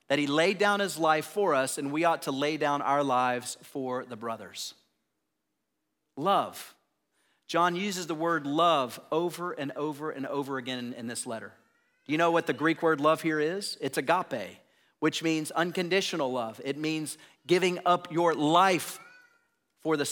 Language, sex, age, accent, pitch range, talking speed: English, male, 40-59, American, 140-185 Hz, 175 wpm